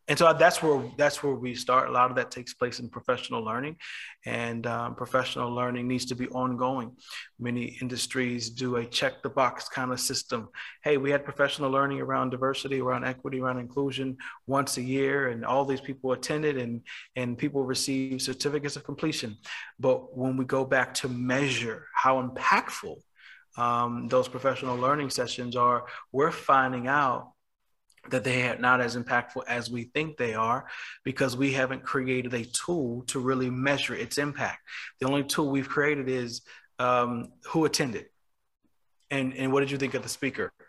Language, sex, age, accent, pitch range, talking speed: English, male, 20-39, American, 125-135 Hz, 175 wpm